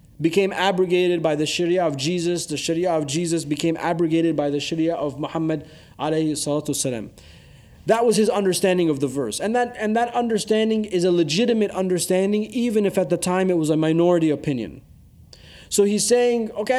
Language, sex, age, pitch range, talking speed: English, male, 30-49, 155-195 Hz, 175 wpm